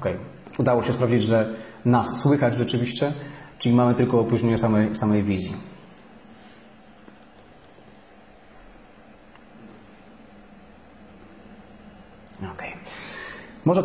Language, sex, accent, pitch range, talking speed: Polish, male, native, 110-135 Hz, 75 wpm